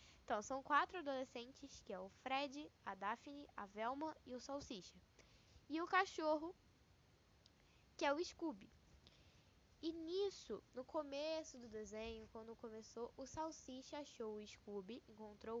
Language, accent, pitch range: Portuguese, Brazilian, 225-290 Hz